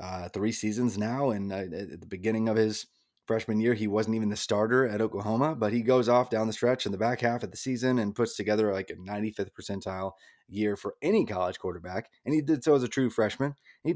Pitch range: 100-130 Hz